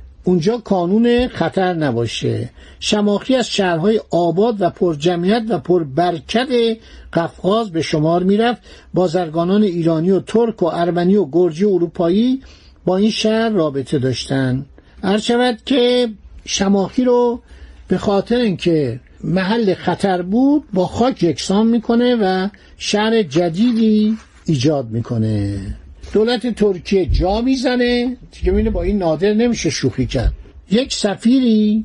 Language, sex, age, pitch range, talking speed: Persian, male, 60-79, 170-225 Hz, 125 wpm